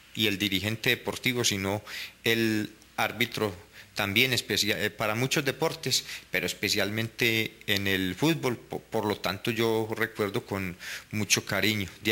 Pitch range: 105-125 Hz